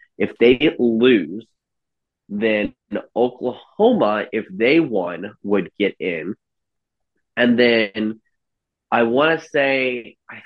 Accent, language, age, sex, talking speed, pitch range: American, English, 30-49, male, 105 wpm, 95-130 Hz